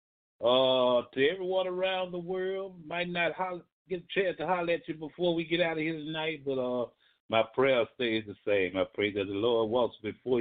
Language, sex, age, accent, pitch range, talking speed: English, male, 60-79, American, 110-150 Hz, 215 wpm